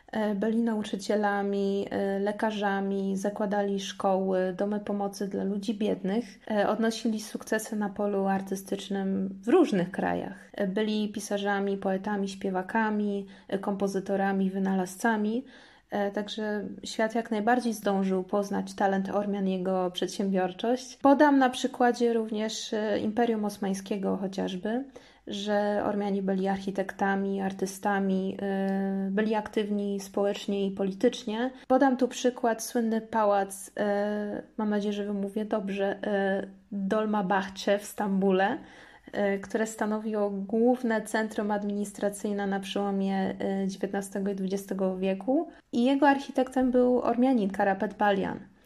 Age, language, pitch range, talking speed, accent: 20-39, Polish, 195-225 Hz, 100 wpm, native